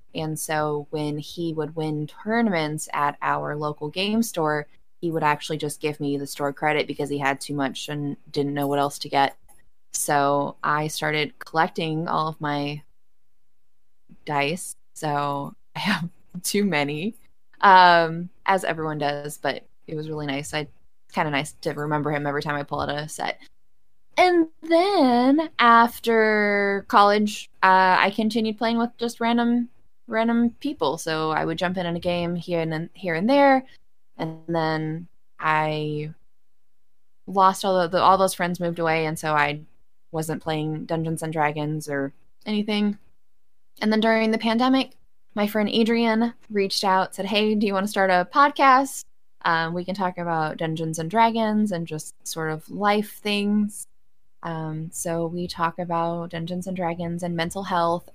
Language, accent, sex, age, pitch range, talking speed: English, American, female, 20-39, 150-210 Hz, 165 wpm